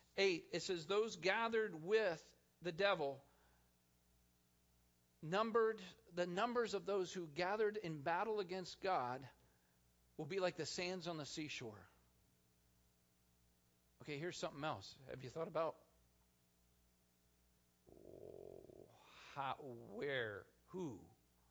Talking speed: 105 wpm